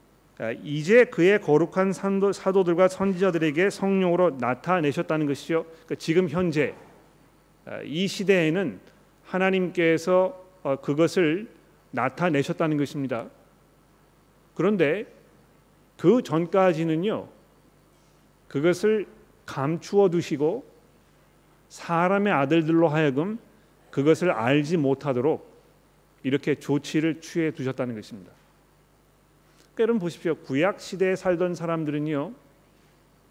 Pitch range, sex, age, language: 145-180 Hz, male, 40-59, Korean